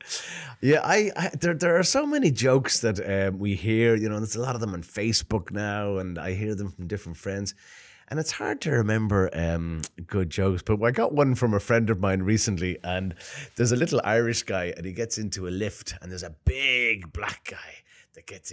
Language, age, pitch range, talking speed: Russian, 30-49, 95-130 Hz, 220 wpm